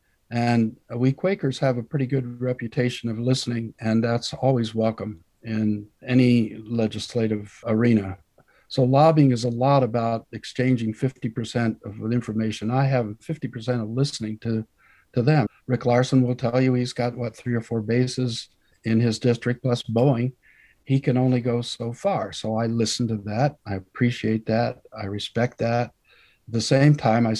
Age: 50-69